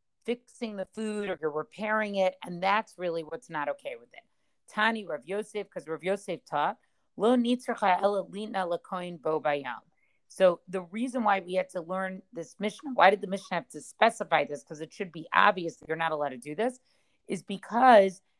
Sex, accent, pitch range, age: female, American, 170-210 Hz, 40-59